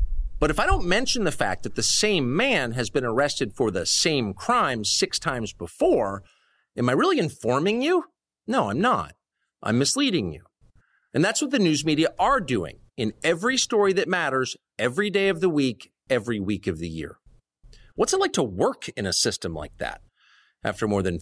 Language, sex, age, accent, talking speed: English, male, 50-69, American, 190 wpm